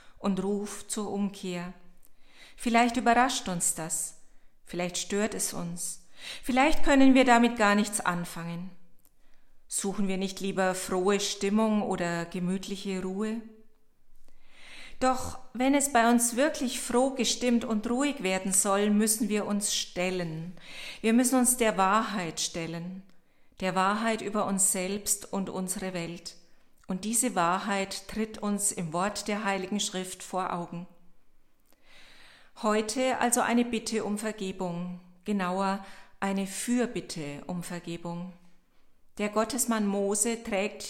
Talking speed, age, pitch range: 125 wpm, 40-59, 185-225 Hz